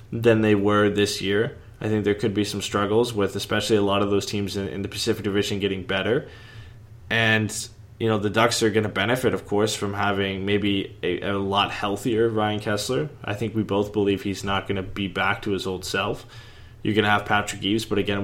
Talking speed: 225 wpm